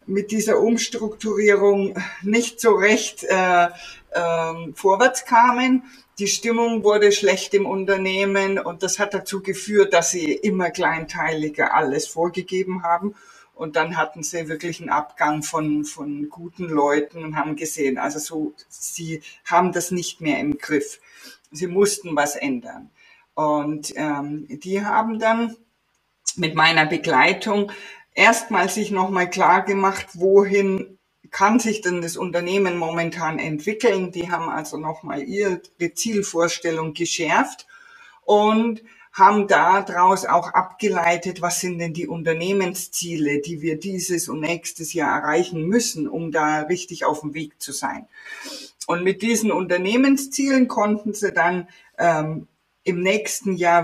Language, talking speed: German, 135 wpm